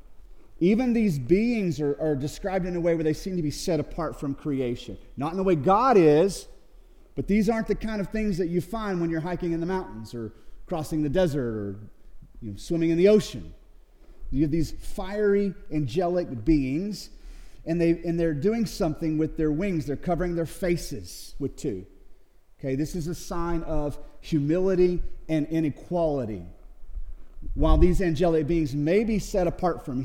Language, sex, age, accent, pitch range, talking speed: English, male, 40-59, American, 145-190 Hz, 175 wpm